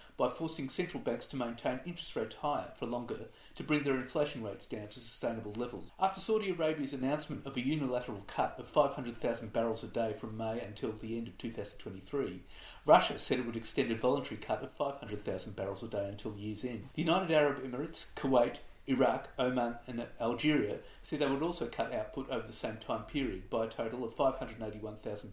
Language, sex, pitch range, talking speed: English, male, 110-145 Hz, 190 wpm